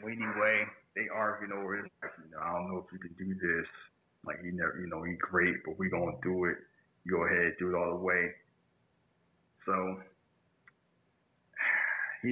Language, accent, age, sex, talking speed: English, American, 30-49, male, 180 wpm